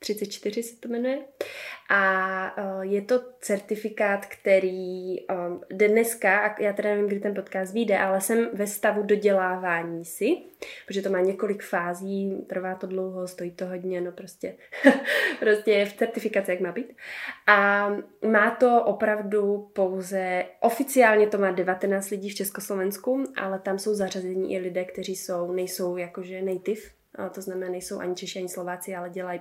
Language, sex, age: Slovak, female, 20-39